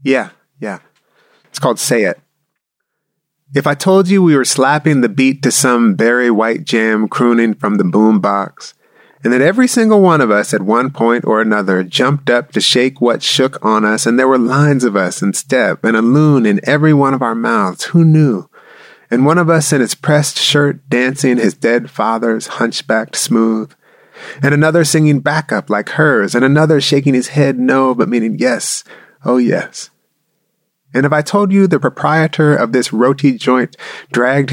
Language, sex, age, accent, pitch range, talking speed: English, male, 30-49, American, 115-150 Hz, 185 wpm